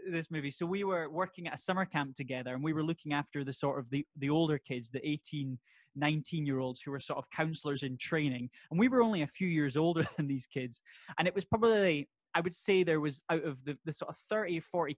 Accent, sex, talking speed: British, male, 255 wpm